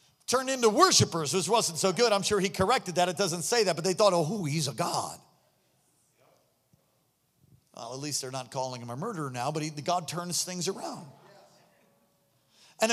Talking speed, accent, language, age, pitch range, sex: 190 wpm, American, English, 40-59, 150-220 Hz, male